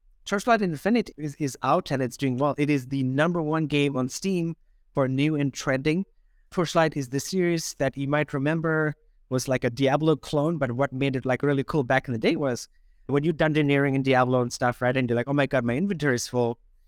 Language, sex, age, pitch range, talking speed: English, male, 30-49, 130-165 Hz, 230 wpm